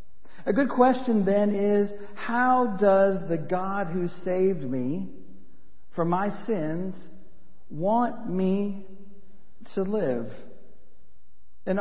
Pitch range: 165-215 Hz